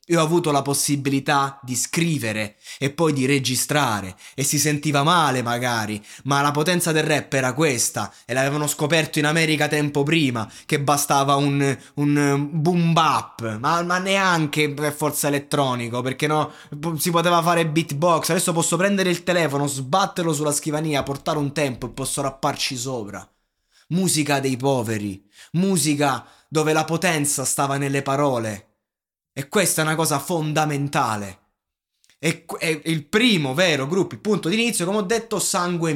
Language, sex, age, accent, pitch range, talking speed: Italian, male, 20-39, native, 135-165 Hz, 155 wpm